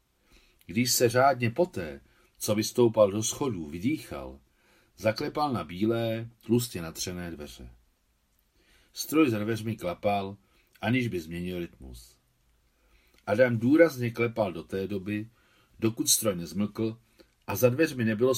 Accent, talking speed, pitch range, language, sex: native, 120 wpm, 85-120 Hz, Czech, male